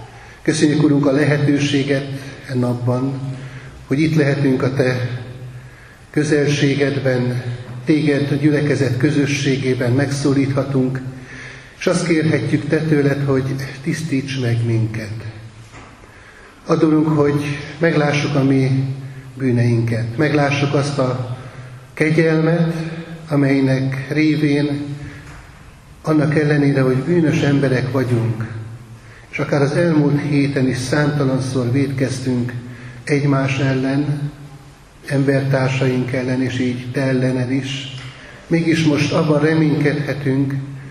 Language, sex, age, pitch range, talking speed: Hungarian, male, 30-49, 125-145 Hz, 95 wpm